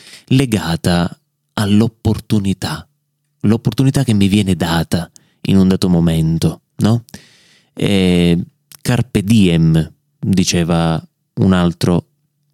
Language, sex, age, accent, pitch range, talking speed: Italian, male, 30-49, native, 95-145 Hz, 85 wpm